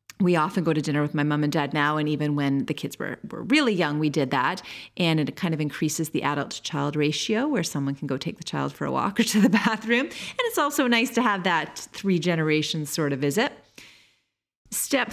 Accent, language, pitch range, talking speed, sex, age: American, English, 150-185 Hz, 225 wpm, female, 30-49